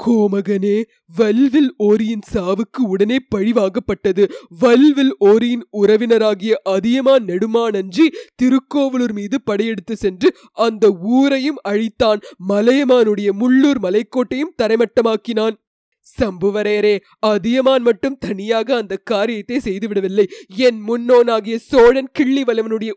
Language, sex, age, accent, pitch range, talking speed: Tamil, female, 20-39, native, 210-255 Hz, 90 wpm